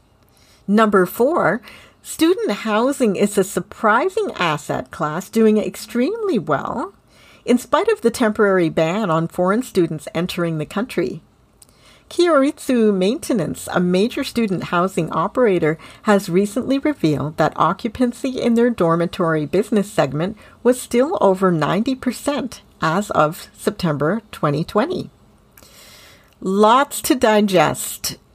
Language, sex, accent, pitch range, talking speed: English, female, American, 160-235 Hz, 110 wpm